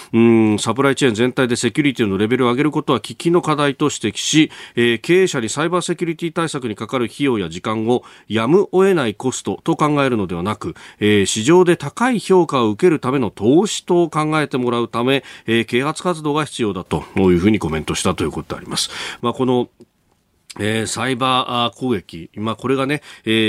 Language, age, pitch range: Japanese, 40-59, 105-150 Hz